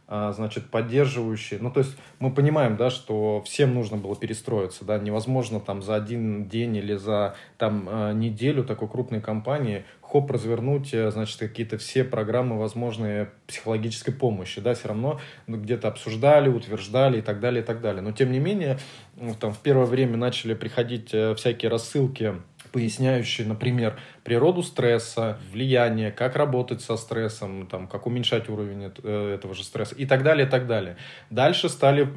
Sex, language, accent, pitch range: male, Russian, native, 110-125 Hz